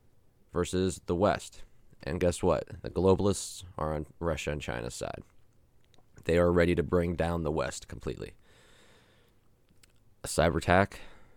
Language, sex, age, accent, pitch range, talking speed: English, male, 20-39, American, 80-95 Hz, 135 wpm